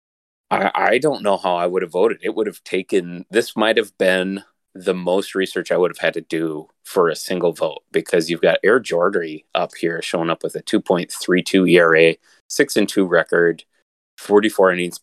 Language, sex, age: English, male, 30-49